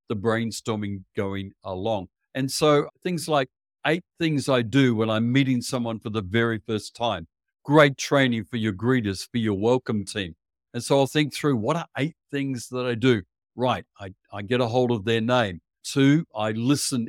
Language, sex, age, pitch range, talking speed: English, male, 50-69, 115-145 Hz, 190 wpm